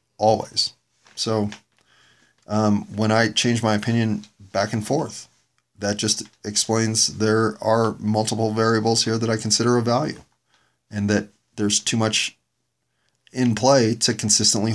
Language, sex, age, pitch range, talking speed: English, male, 40-59, 105-115 Hz, 135 wpm